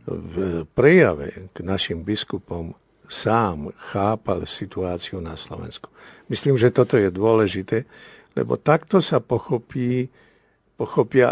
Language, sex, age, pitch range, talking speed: Slovak, male, 60-79, 100-130 Hz, 105 wpm